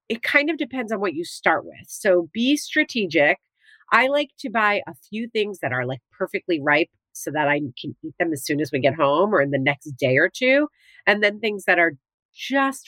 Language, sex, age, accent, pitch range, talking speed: English, female, 40-59, American, 160-260 Hz, 230 wpm